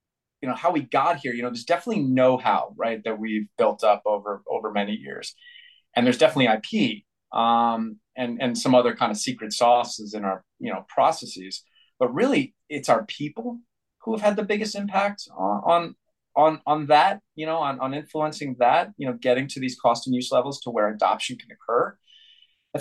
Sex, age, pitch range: male, 20-39, 110-155 Hz